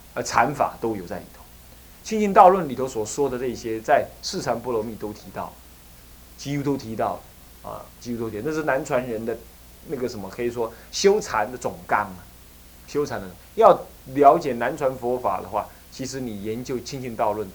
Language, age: Chinese, 20-39